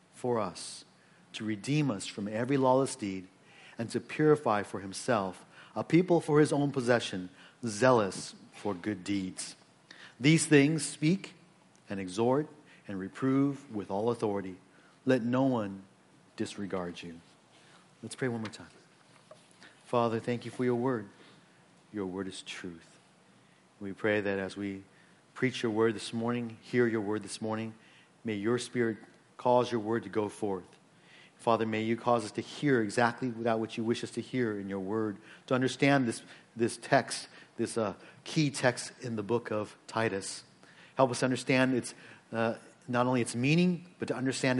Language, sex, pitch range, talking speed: English, male, 105-130 Hz, 165 wpm